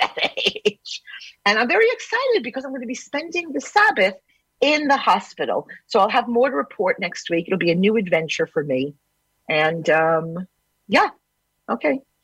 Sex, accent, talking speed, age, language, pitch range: female, American, 170 wpm, 50-69, English, 205-300 Hz